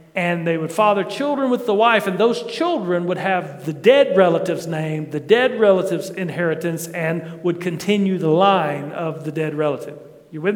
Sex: male